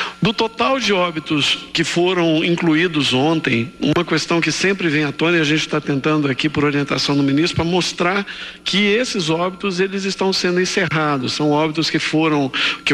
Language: Portuguese